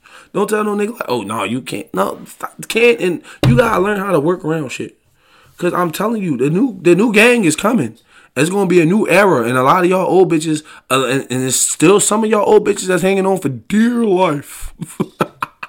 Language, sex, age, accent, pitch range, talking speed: English, male, 20-39, American, 155-215 Hz, 230 wpm